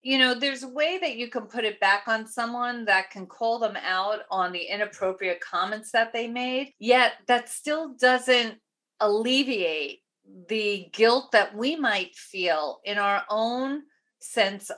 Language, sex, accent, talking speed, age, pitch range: English, female, American, 160 wpm, 40-59, 180-240 Hz